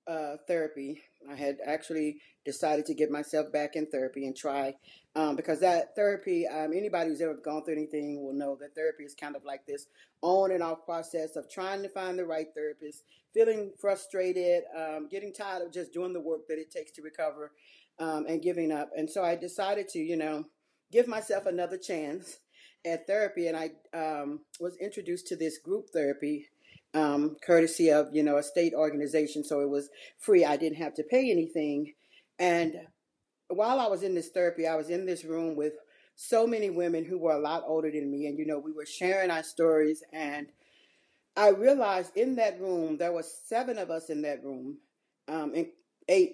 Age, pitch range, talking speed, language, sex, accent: 40-59, 150-180 Hz, 195 wpm, English, female, American